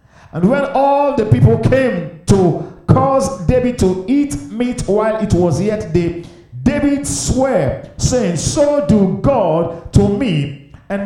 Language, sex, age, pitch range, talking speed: English, male, 50-69, 160-235 Hz, 140 wpm